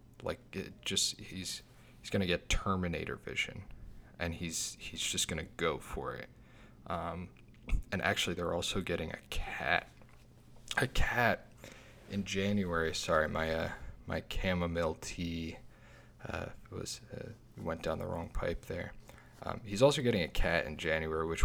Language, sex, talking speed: English, male, 150 wpm